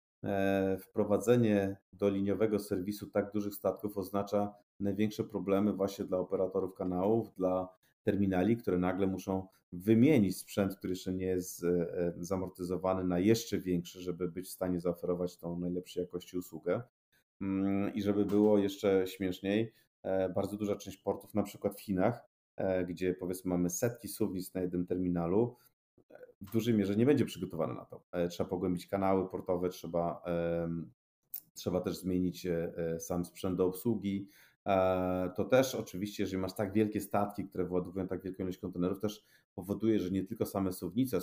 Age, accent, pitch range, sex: 40-59, native, 90-100 Hz, male